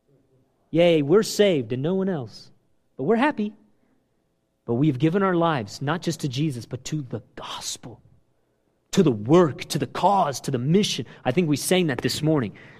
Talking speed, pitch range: 185 wpm, 160-235 Hz